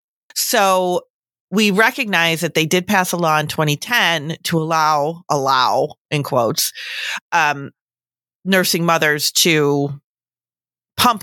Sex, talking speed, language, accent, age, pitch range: female, 110 wpm, English, American, 30-49, 150-190 Hz